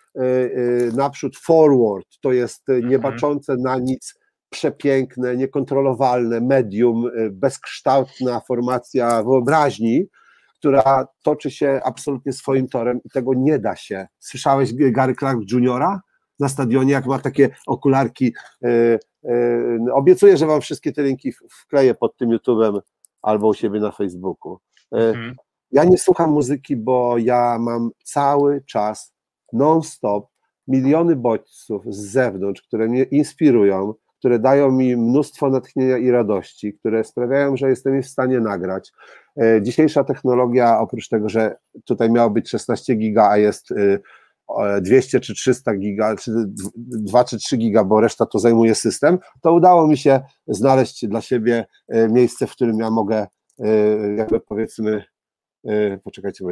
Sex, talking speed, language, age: male, 130 wpm, Polish, 50-69